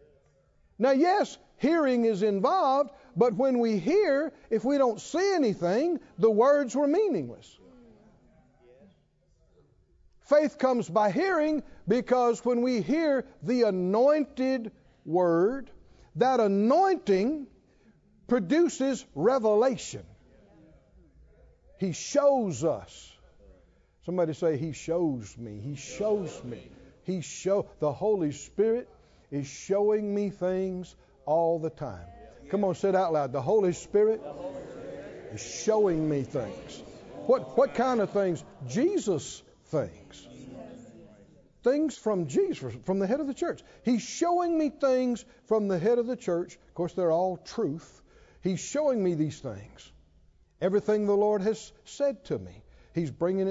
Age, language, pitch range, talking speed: 50-69, English, 165-255 Hz, 130 wpm